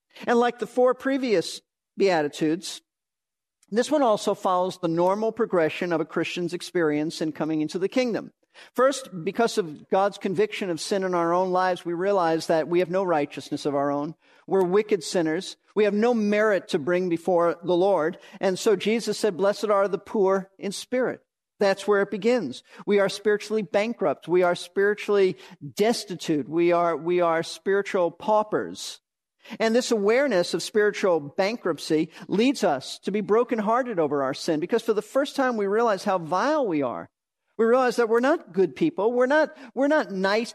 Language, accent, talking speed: English, American, 180 wpm